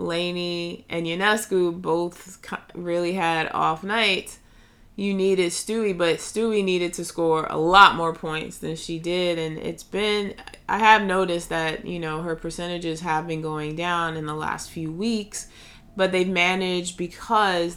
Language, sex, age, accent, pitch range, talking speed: English, female, 20-39, American, 165-190 Hz, 160 wpm